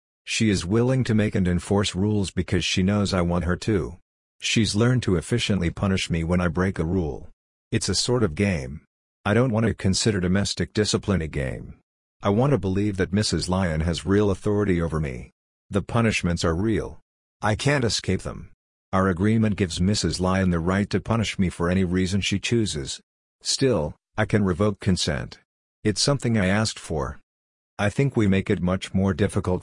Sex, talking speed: male, 190 wpm